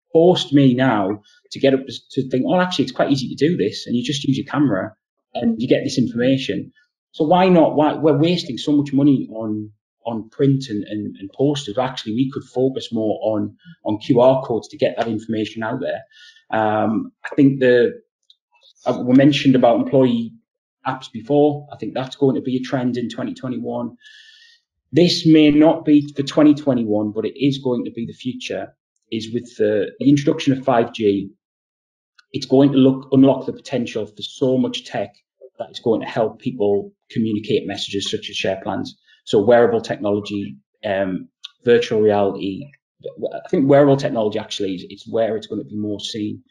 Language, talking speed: English, 185 wpm